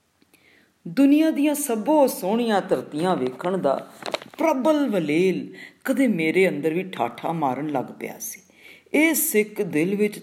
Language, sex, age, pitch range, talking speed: Punjabi, female, 50-69, 165-225 Hz, 130 wpm